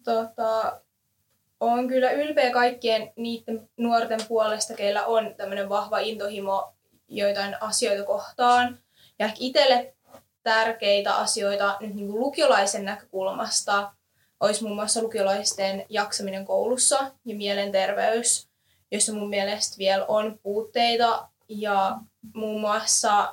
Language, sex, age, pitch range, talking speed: Finnish, female, 20-39, 200-230 Hz, 110 wpm